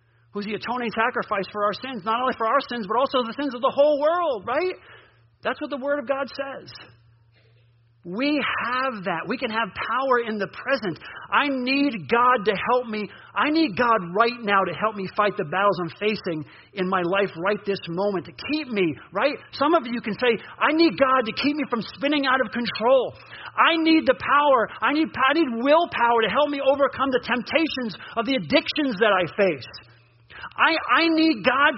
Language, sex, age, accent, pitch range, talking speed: English, male, 40-59, American, 215-285 Hz, 200 wpm